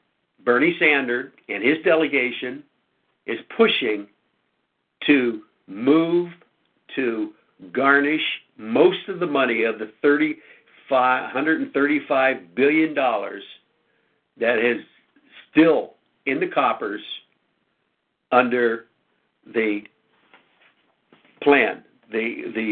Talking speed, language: 80 wpm, English